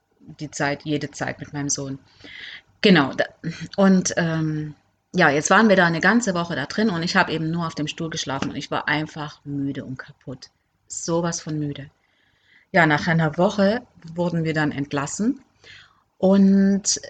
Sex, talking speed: female, 170 wpm